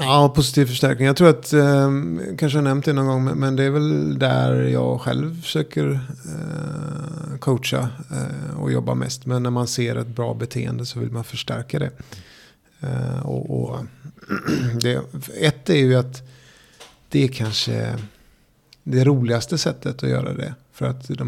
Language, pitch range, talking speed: Swedish, 115-135 Hz, 160 wpm